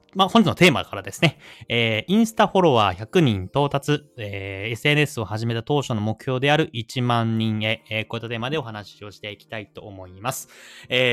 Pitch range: 105-150 Hz